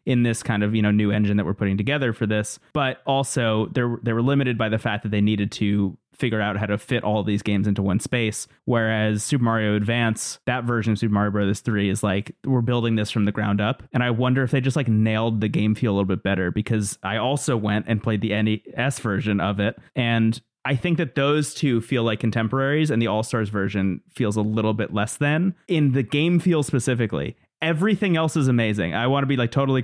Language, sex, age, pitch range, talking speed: English, male, 30-49, 110-135 Hz, 235 wpm